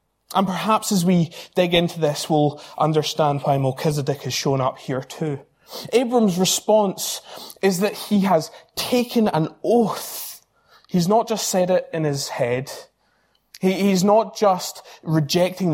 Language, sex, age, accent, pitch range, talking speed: English, male, 20-39, British, 140-195 Hz, 140 wpm